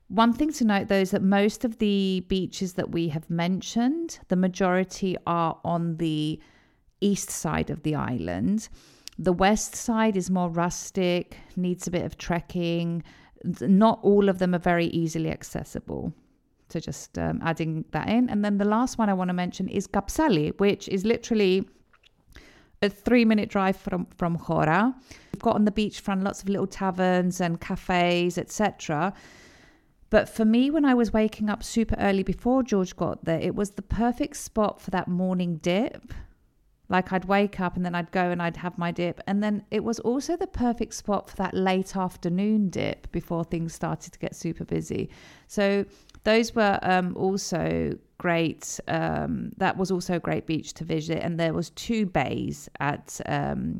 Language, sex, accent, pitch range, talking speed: Greek, female, British, 175-210 Hz, 180 wpm